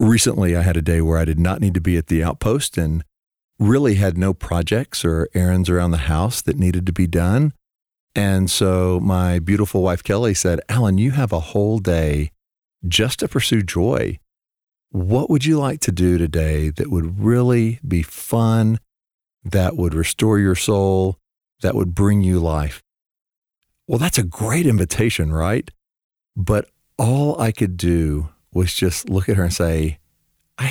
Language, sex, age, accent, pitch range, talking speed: English, male, 50-69, American, 85-110 Hz, 170 wpm